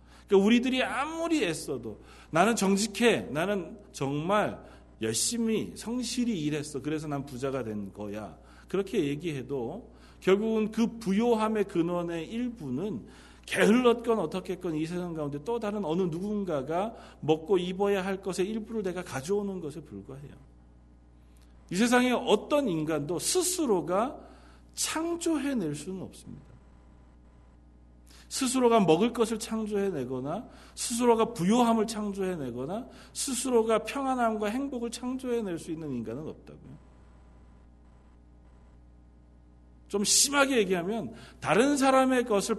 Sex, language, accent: male, Korean, native